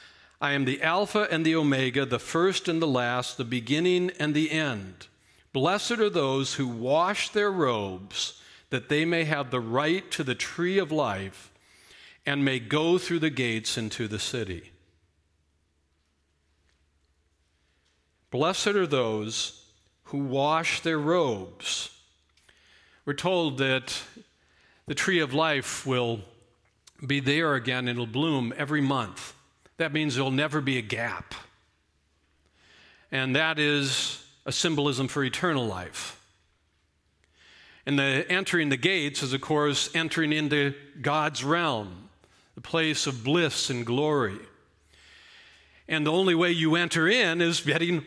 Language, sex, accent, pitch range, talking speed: English, male, American, 105-160 Hz, 135 wpm